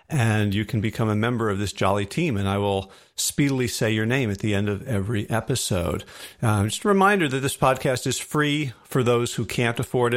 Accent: American